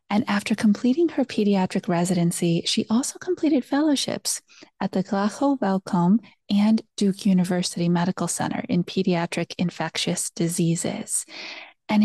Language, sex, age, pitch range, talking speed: English, female, 30-49, 180-225 Hz, 120 wpm